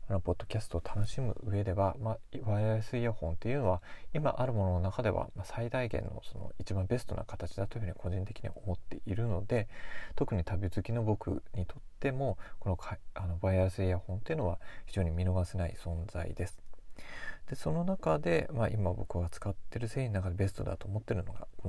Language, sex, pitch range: Japanese, male, 90-110 Hz